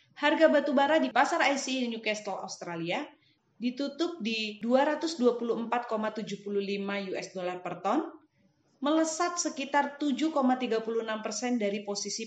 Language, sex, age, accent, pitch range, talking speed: Indonesian, female, 30-49, native, 205-275 Hz, 100 wpm